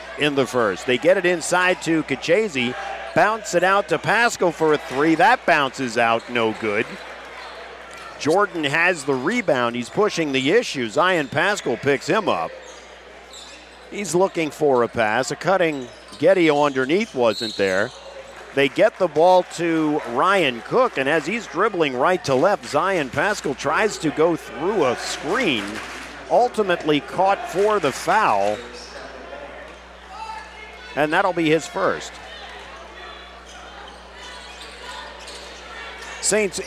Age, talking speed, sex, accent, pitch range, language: 50-69, 130 wpm, male, American, 135-190 Hz, English